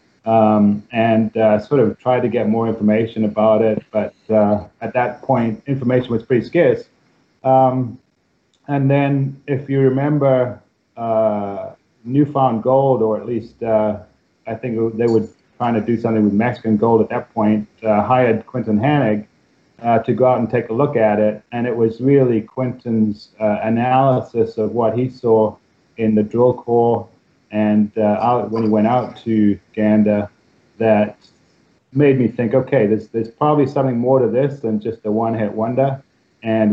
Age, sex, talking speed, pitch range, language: 30-49, male, 170 wpm, 110-130 Hz, English